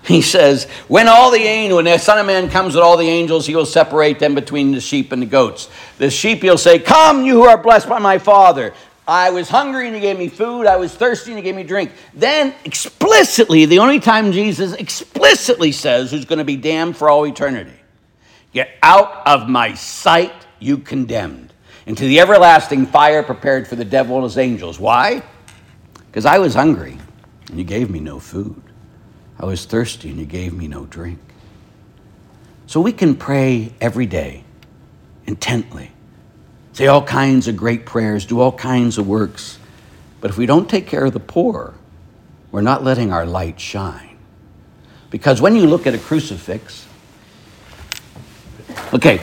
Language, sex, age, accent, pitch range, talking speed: English, male, 60-79, American, 115-190 Hz, 180 wpm